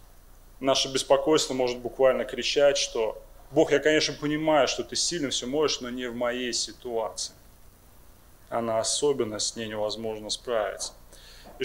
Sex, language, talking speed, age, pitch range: male, Russian, 140 wpm, 20-39, 120-155 Hz